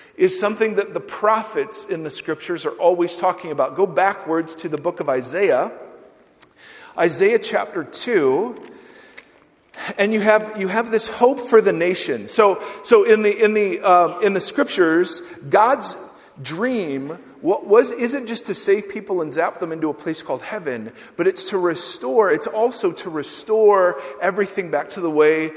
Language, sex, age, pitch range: English, male, 40-59, 175-280 Hz